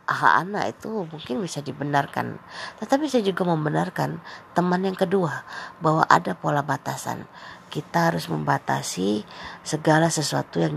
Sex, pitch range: female, 140-170 Hz